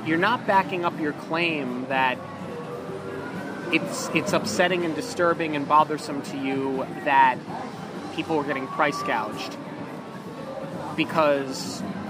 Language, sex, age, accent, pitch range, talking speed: English, male, 30-49, American, 150-175 Hz, 115 wpm